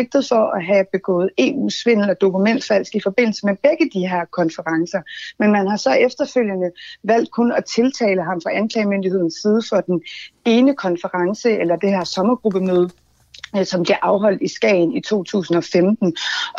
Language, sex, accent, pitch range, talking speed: Danish, female, native, 190-240 Hz, 155 wpm